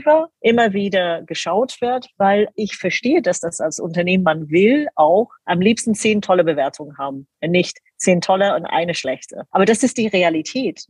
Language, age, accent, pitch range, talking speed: German, 40-59, German, 165-205 Hz, 170 wpm